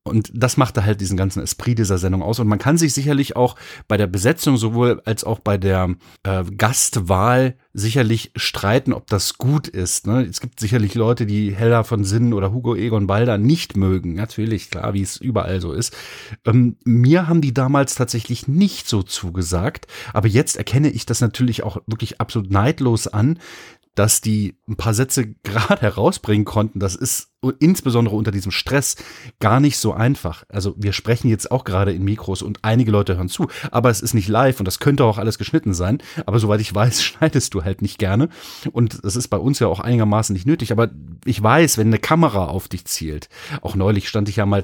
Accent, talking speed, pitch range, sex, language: German, 200 wpm, 100-130 Hz, male, German